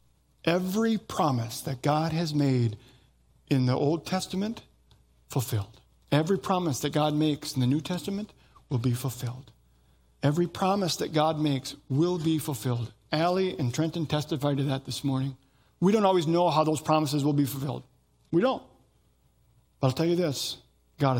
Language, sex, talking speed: English, male, 160 wpm